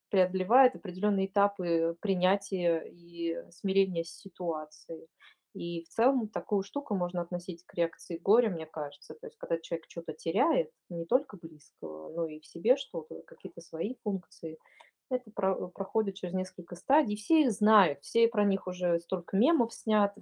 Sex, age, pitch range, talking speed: female, 20-39, 175-220 Hz, 155 wpm